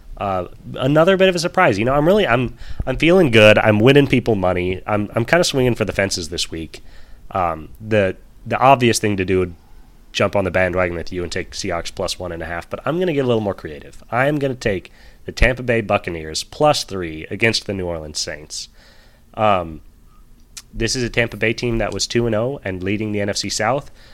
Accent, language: American, English